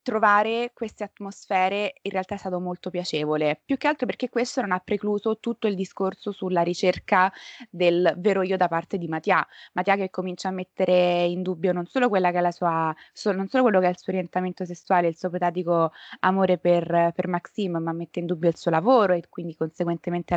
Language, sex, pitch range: Italian, female, 175-215 Hz